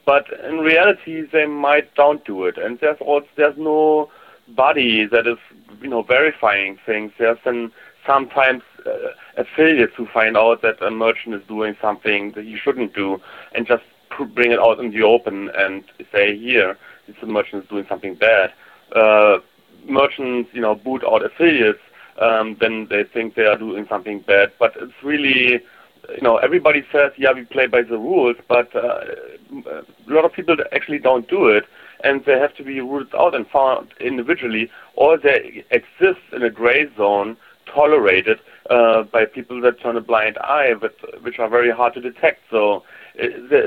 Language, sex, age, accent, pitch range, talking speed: English, male, 30-49, German, 115-150 Hz, 180 wpm